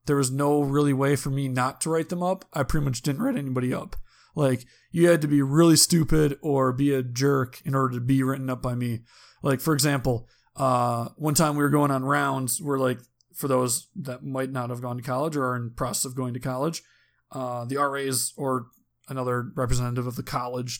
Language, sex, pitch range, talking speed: English, male, 125-145 Hz, 225 wpm